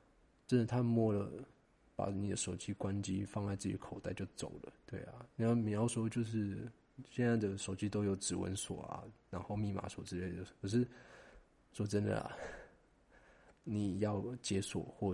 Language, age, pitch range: Chinese, 20-39, 95-110 Hz